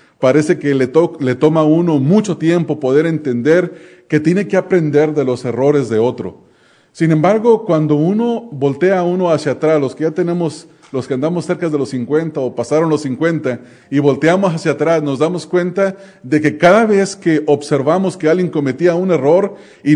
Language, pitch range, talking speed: English, 140-170 Hz, 190 wpm